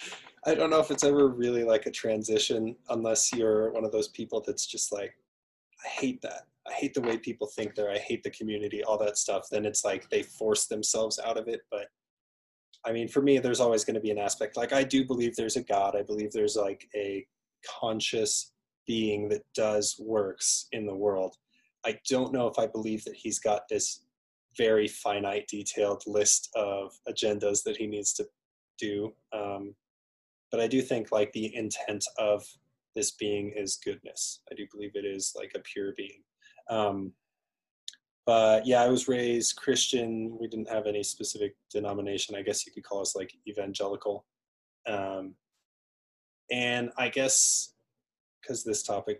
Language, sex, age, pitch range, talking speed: English, male, 20-39, 105-125 Hz, 180 wpm